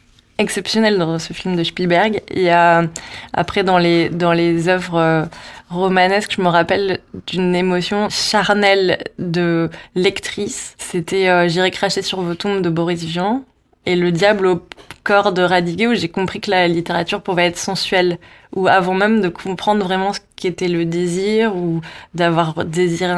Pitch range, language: 170-190 Hz, French